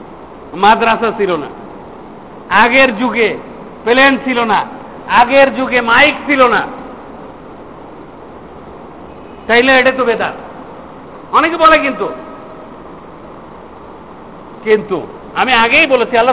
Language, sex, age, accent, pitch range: Bengali, male, 50-69, native, 245-290 Hz